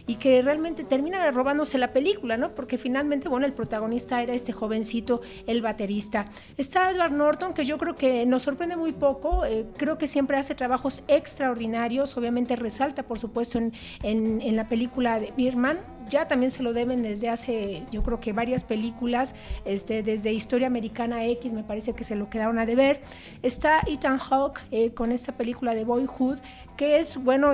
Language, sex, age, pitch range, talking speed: Spanish, female, 40-59, 230-270 Hz, 185 wpm